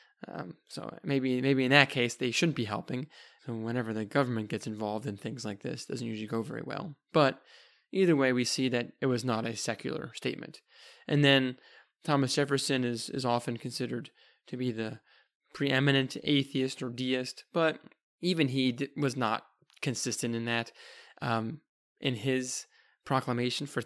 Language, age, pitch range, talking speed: English, 20-39, 115-135 Hz, 170 wpm